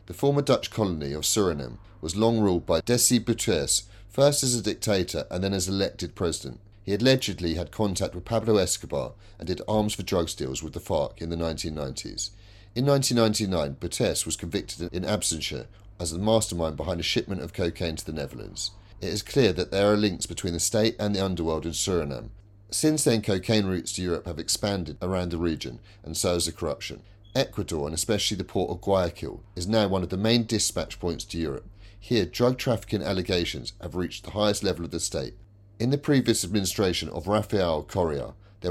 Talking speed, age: 195 wpm, 30-49